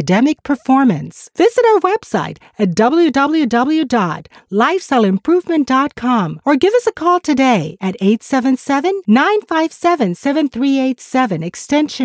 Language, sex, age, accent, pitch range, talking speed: English, female, 40-59, American, 180-290 Hz, 85 wpm